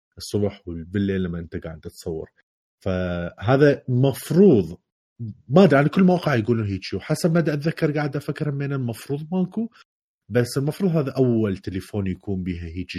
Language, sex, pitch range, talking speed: Arabic, male, 90-125 Hz, 150 wpm